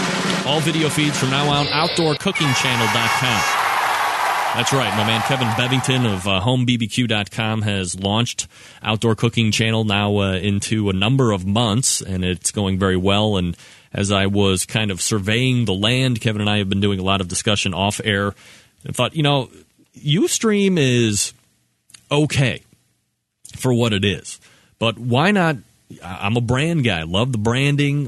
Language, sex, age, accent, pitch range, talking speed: English, male, 30-49, American, 100-125 Hz, 170 wpm